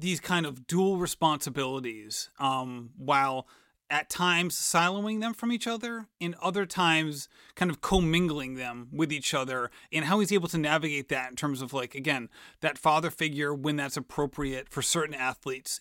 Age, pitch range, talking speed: 30-49, 150-195 Hz, 170 wpm